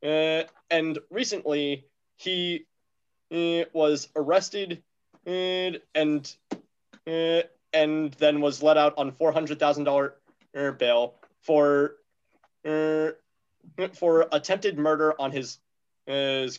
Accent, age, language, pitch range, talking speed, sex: American, 20-39, English, 140-165 Hz, 100 wpm, male